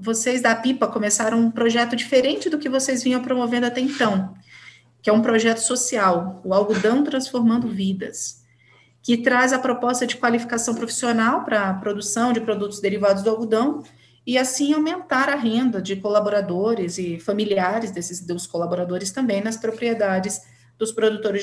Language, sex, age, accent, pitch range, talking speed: Portuguese, female, 30-49, Brazilian, 190-250 Hz, 150 wpm